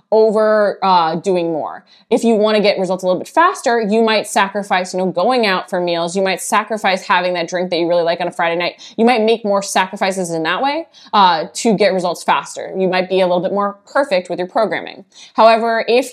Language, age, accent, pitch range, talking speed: English, 20-39, American, 180-220 Hz, 235 wpm